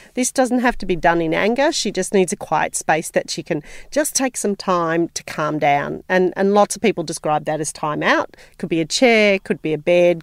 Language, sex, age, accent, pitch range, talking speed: English, female, 40-59, Australian, 160-200 Hz, 245 wpm